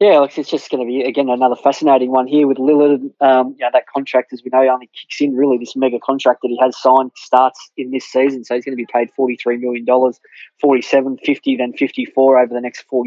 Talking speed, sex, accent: 255 wpm, male, Australian